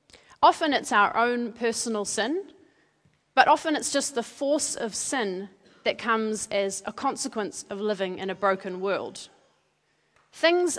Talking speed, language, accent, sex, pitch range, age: 145 wpm, English, Australian, female, 205-270 Hz, 30-49